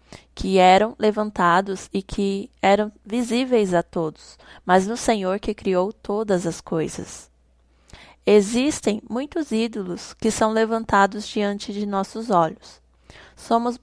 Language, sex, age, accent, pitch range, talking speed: Portuguese, female, 20-39, Brazilian, 190-225 Hz, 120 wpm